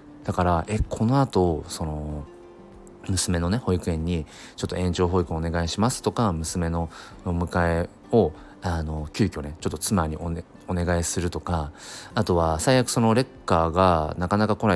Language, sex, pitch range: Japanese, male, 80-110 Hz